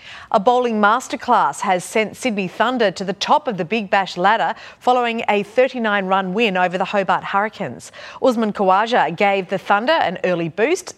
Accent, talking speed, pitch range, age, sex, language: Australian, 170 wpm, 190-240 Hz, 30-49, female, English